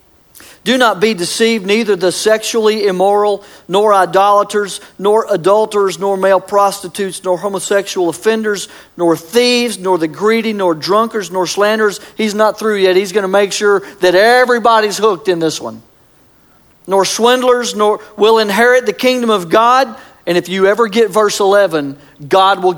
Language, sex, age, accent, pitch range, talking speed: English, male, 50-69, American, 180-235 Hz, 160 wpm